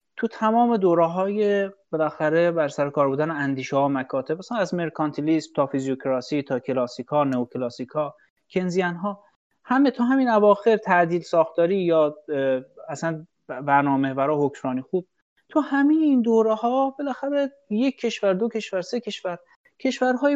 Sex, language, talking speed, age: male, Persian, 135 wpm, 30-49